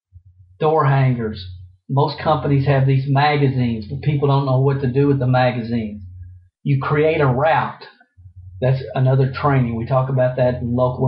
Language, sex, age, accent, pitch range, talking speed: English, male, 50-69, American, 105-155 Hz, 160 wpm